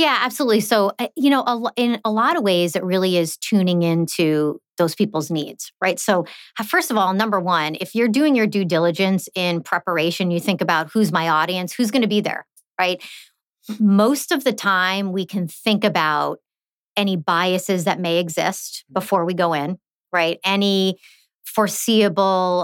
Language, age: English, 30-49